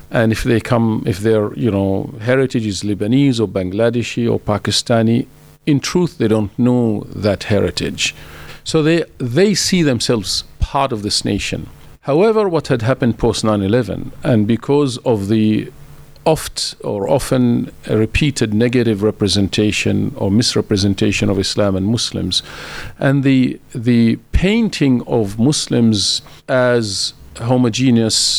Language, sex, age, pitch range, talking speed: English, male, 50-69, 110-135 Hz, 130 wpm